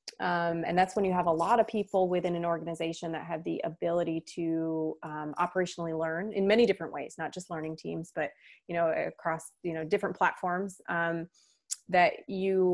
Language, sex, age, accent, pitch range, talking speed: English, female, 30-49, American, 165-185 Hz, 180 wpm